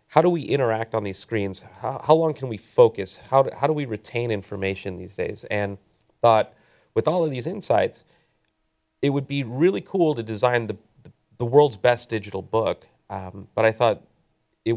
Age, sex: 30-49, male